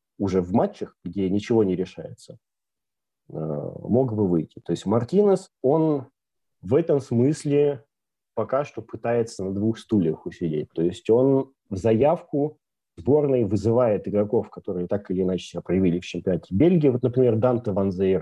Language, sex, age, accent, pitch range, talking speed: Russian, male, 30-49, native, 95-135 Hz, 150 wpm